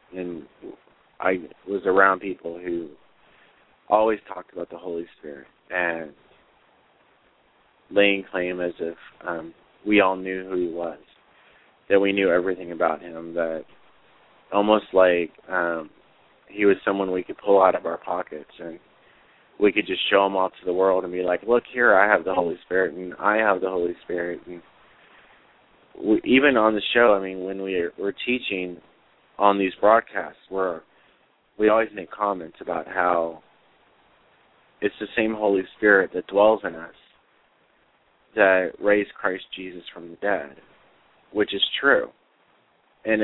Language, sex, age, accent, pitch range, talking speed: English, male, 30-49, American, 85-100 Hz, 150 wpm